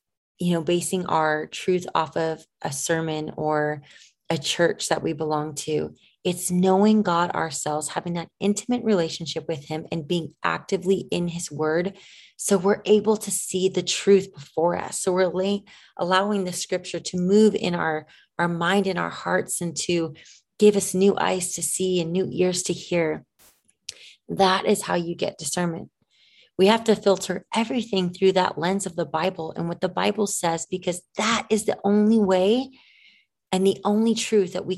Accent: American